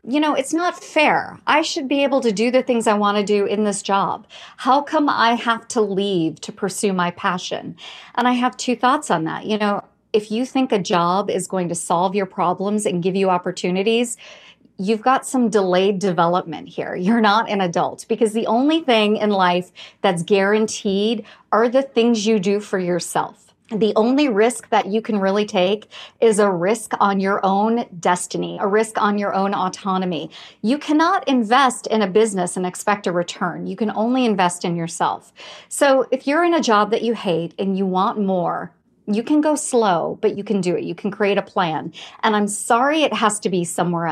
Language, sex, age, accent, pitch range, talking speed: English, female, 40-59, American, 195-245 Hz, 205 wpm